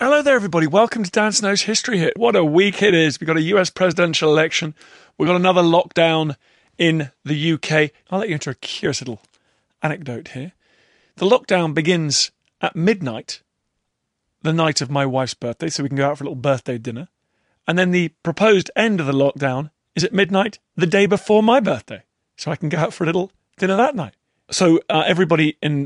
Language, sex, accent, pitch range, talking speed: English, male, British, 130-180 Hz, 205 wpm